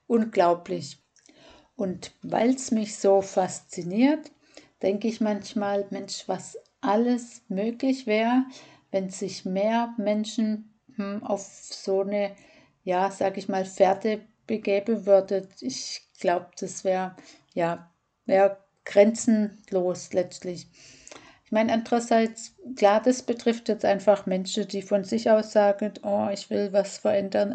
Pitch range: 195-225 Hz